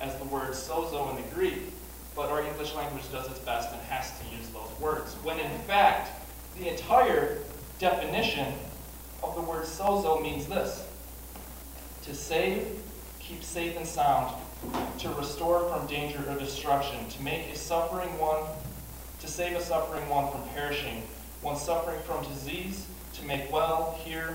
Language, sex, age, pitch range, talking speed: English, male, 20-39, 130-165 Hz, 160 wpm